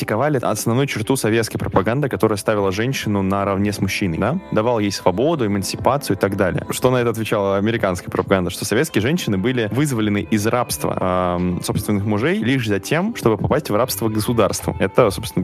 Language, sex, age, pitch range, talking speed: Russian, male, 20-39, 95-115 Hz, 175 wpm